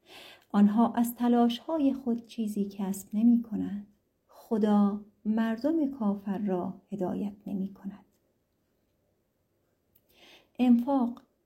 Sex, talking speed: female, 75 wpm